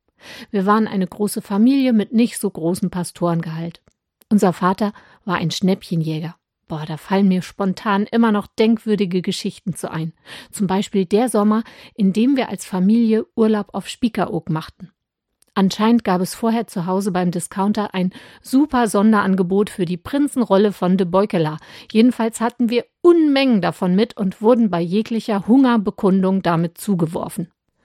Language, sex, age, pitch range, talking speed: German, female, 50-69, 175-220 Hz, 150 wpm